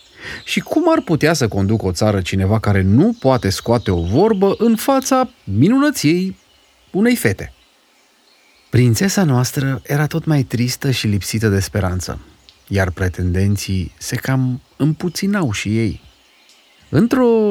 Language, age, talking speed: Romanian, 30-49, 130 wpm